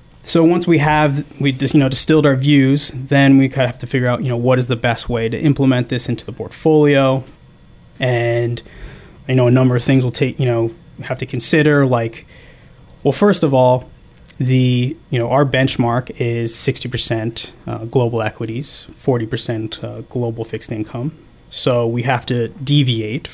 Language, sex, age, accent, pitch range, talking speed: English, male, 20-39, American, 120-135 Hz, 185 wpm